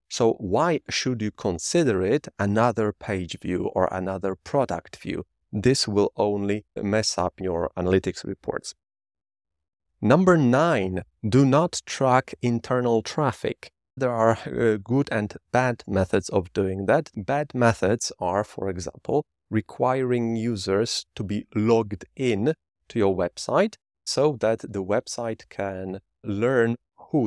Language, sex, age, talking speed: English, male, 40-59, 130 wpm